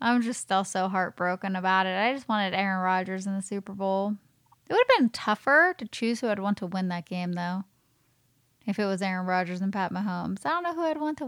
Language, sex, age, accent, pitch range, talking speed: English, female, 10-29, American, 180-220 Hz, 245 wpm